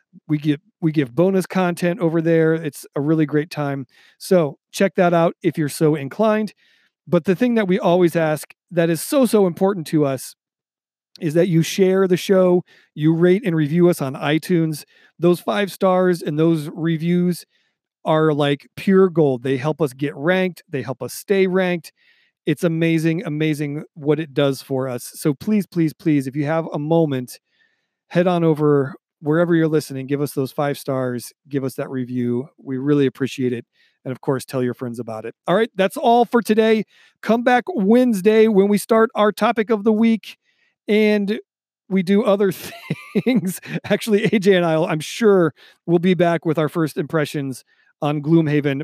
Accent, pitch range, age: American, 150-195 Hz, 40-59